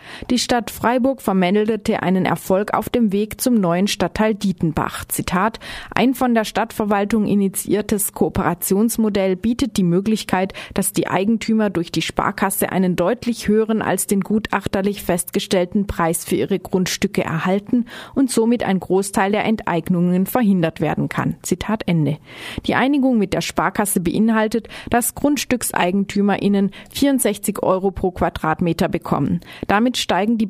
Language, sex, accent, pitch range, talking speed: German, female, German, 185-225 Hz, 135 wpm